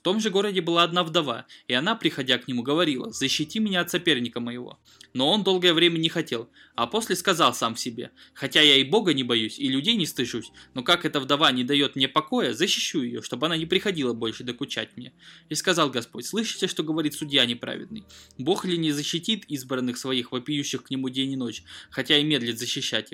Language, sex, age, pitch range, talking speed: Russian, male, 20-39, 125-170 Hz, 210 wpm